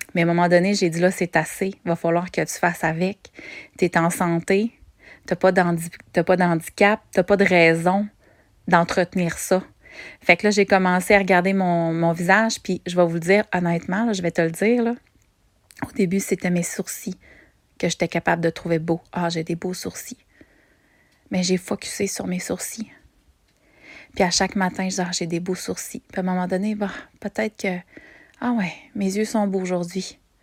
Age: 30-49